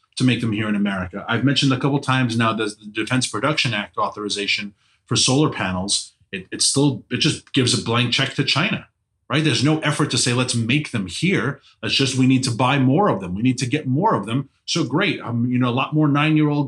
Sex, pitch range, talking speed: male, 110-140 Hz, 240 wpm